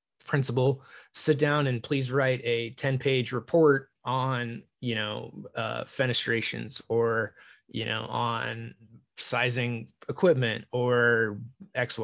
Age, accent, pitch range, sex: 20-39, American, 115-140 Hz, male